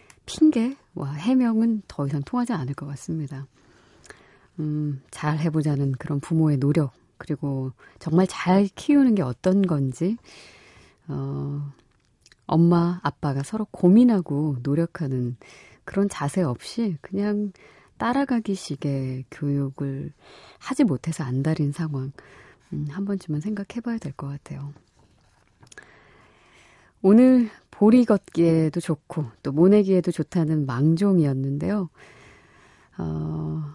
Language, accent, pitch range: Korean, native, 140-195 Hz